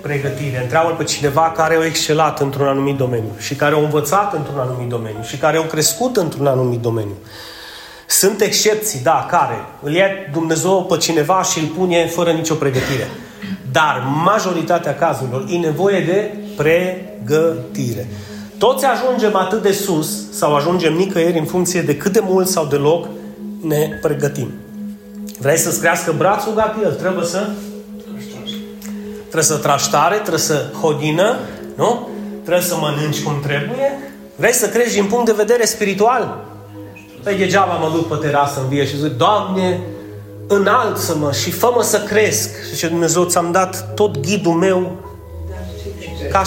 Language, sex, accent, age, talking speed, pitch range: Romanian, male, native, 30-49, 150 wpm, 140-205 Hz